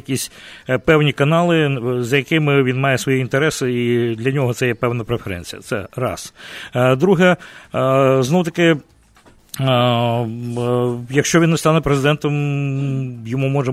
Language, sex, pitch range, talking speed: English, male, 125-165 Hz, 120 wpm